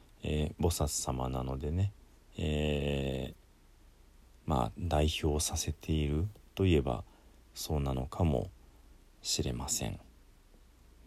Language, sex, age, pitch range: Japanese, male, 40-59, 70-90 Hz